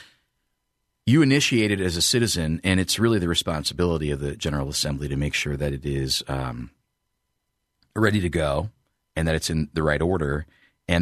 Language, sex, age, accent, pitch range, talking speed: English, male, 40-59, American, 70-90 Hz, 180 wpm